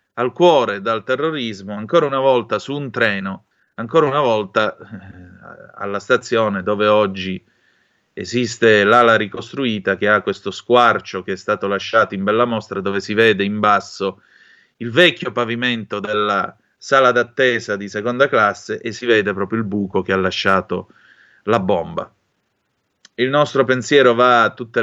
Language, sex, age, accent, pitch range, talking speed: Italian, male, 30-49, native, 105-130 Hz, 150 wpm